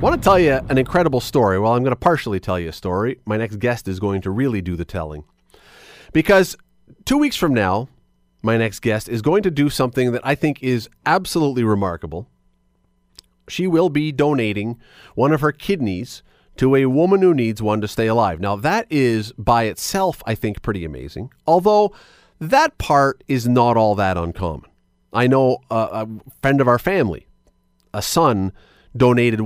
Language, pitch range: English, 95-145 Hz